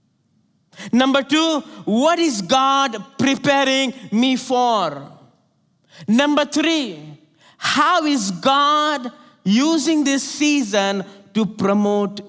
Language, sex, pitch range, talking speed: English, male, 185-285 Hz, 90 wpm